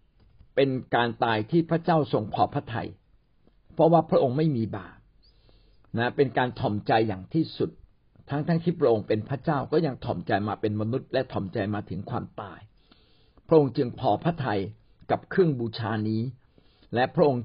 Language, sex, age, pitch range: Thai, male, 60-79, 110-160 Hz